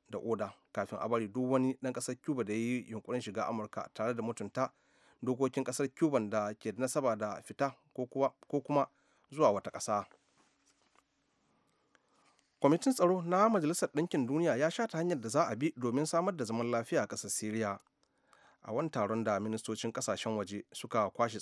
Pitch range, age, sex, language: 105-135 Hz, 30-49, male, English